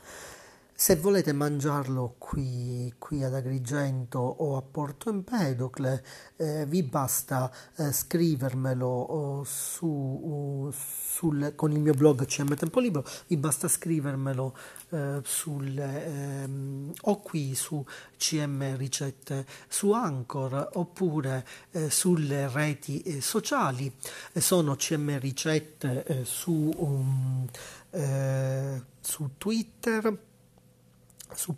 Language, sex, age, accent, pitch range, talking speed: Italian, male, 40-59, native, 135-160 Hz, 105 wpm